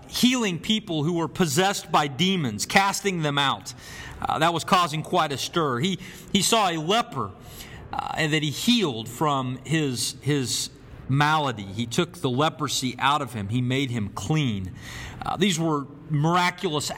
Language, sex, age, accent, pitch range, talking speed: English, male, 40-59, American, 145-195 Hz, 160 wpm